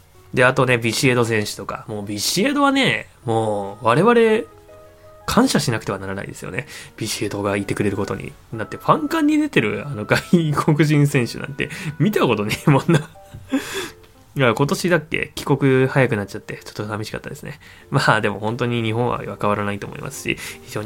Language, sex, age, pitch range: Japanese, male, 20-39, 105-155 Hz